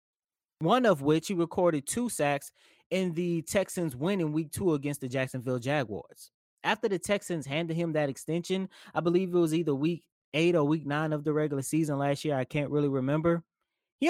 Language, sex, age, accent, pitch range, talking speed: English, male, 20-39, American, 145-185 Hz, 190 wpm